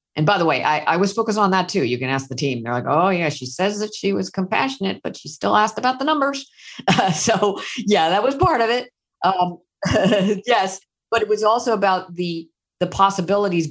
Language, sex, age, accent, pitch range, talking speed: English, female, 50-69, American, 140-195 Hz, 225 wpm